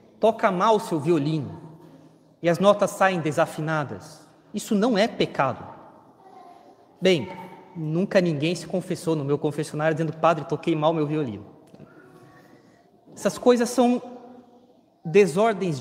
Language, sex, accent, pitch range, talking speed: Portuguese, male, Brazilian, 165-245 Hz, 120 wpm